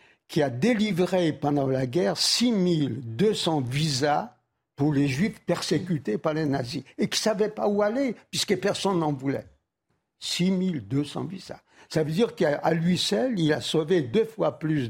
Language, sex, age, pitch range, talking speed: French, male, 60-79, 140-185 Hz, 160 wpm